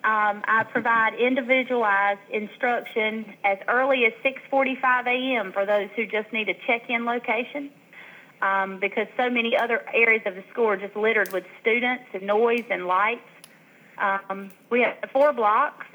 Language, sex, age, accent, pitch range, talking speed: English, female, 30-49, American, 195-230 Hz, 155 wpm